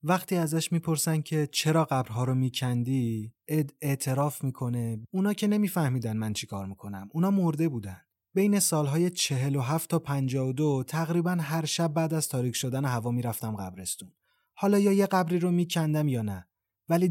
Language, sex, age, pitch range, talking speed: Persian, male, 30-49, 115-155 Hz, 160 wpm